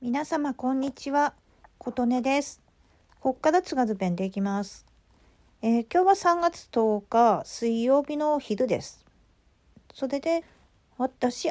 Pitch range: 205-295 Hz